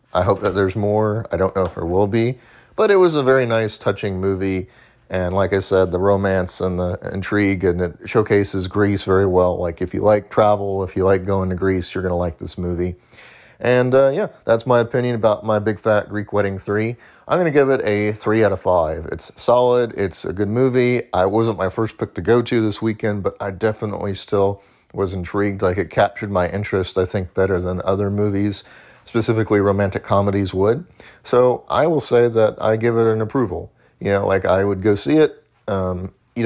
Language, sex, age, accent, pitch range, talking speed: English, male, 30-49, American, 95-115 Hz, 215 wpm